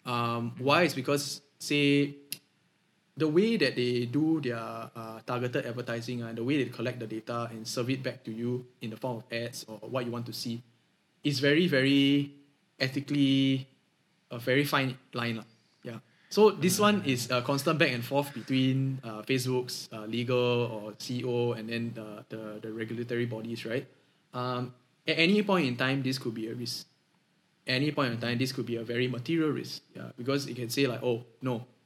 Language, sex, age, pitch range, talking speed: English, male, 10-29, 115-140 Hz, 195 wpm